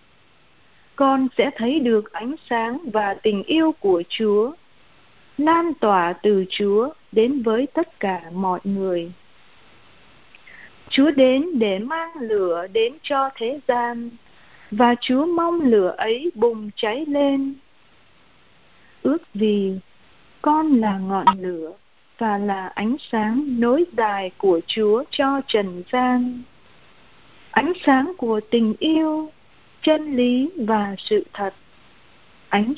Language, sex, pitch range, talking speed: Vietnamese, female, 215-310 Hz, 120 wpm